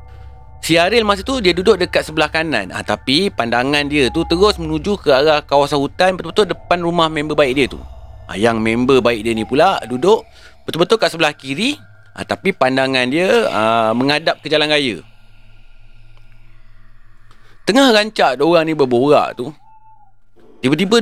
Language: Malay